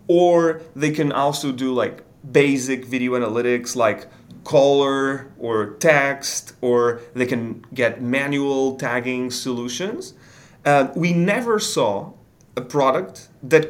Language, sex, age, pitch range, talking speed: English, male, 30-49, 120-145 Hz, 120 wpm